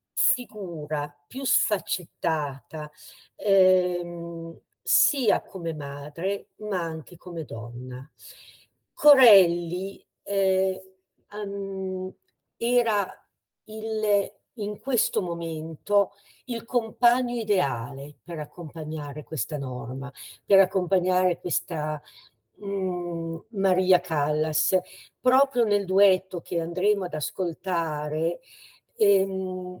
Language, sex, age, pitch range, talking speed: Italian, female, 50-69, 155-205 Hz, 80 wpm